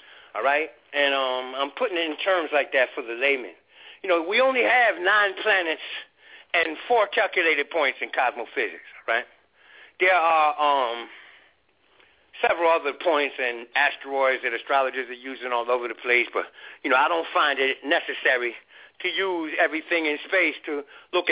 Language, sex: English, male